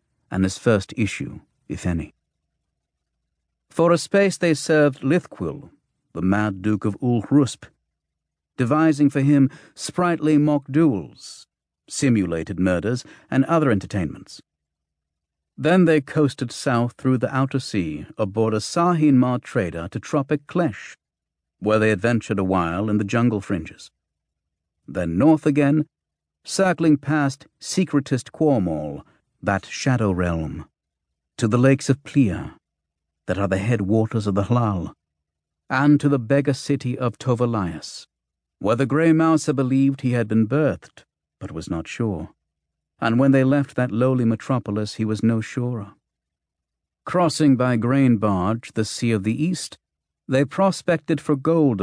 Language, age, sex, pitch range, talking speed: English, 60-79, male, 90-140 Hz, 135 wpm